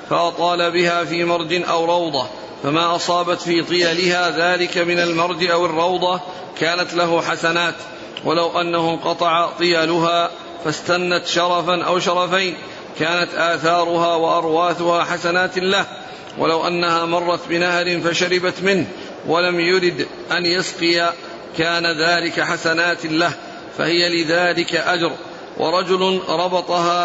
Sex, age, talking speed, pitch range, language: male, 40-59, 110 wpm, 170-175 Hz, Arabic